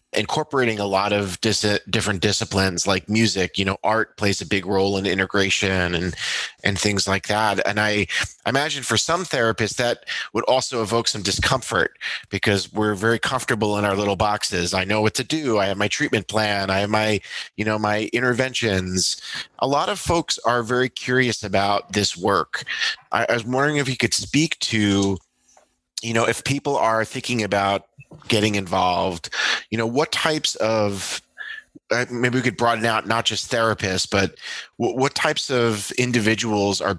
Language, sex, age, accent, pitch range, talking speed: English, male, 30-49, American, 100-120 Hz, 175 wpm